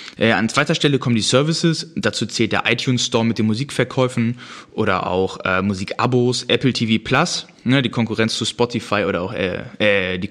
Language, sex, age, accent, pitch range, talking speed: German, male, 20-39, German, 110-135 Hz, 180 wpm